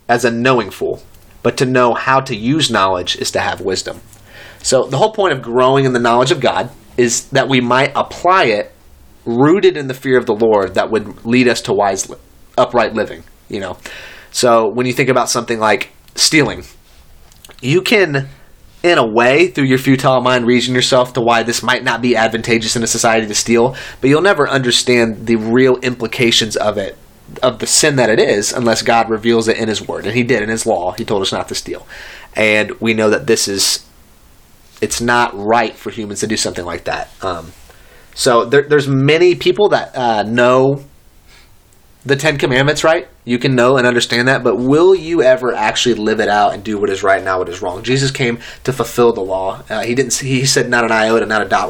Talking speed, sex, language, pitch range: 215 wpm, male, English, 110-130 Hz